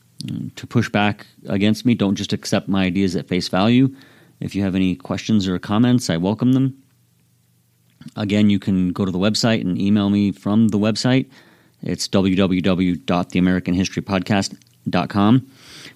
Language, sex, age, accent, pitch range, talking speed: English, male, 30-49, American, 90-115 Hz, 145 wpm